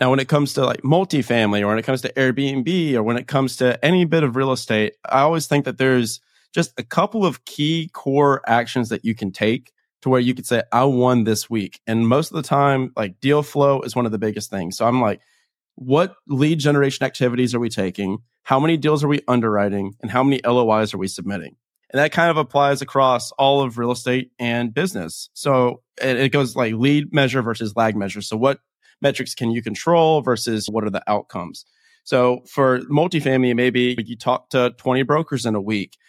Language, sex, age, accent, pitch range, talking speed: English, male, 30-49, American, 120-140 Hz, 215 wpm